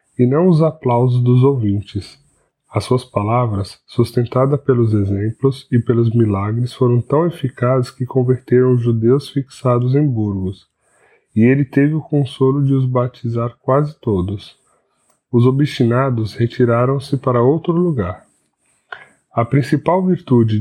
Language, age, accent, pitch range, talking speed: Portuguese, 20-39, Brazilian, 115-140 Hz, 130 wpm